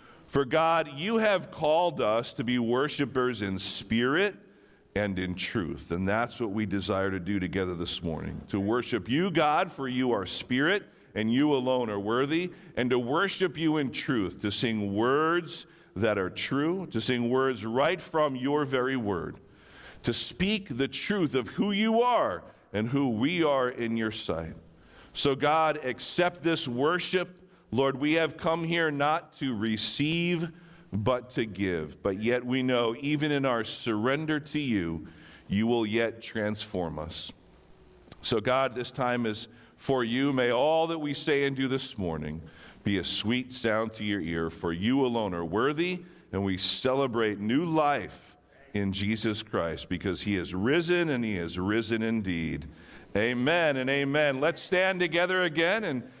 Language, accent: English, American